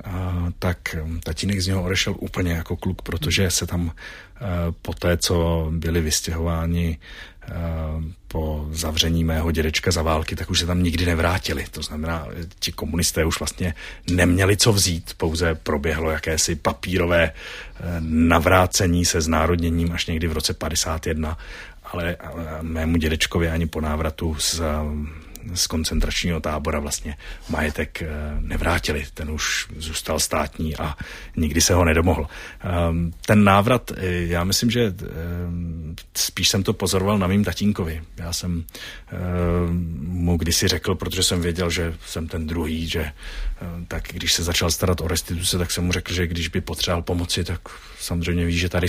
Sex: male